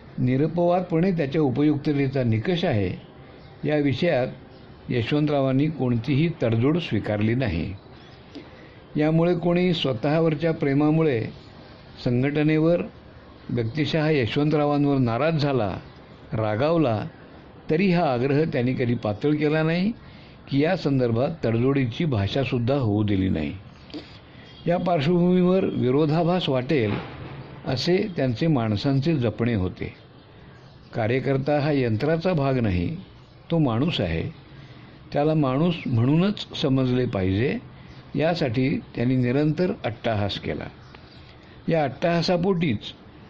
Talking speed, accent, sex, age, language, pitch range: 80 wpm, native, male, 60-79, Hindi, 125-160 Hz